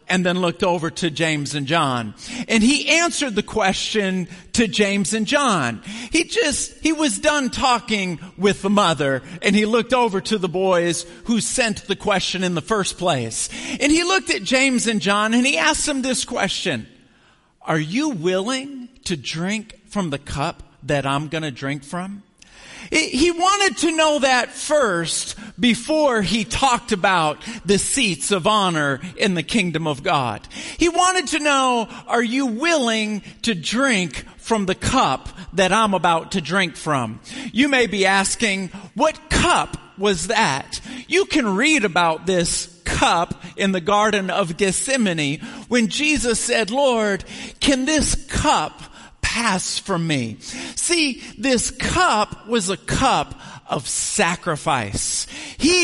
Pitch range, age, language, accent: 175-255 Hz, 50-69, English, American